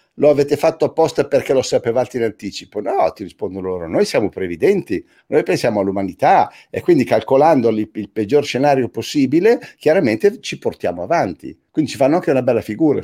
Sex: male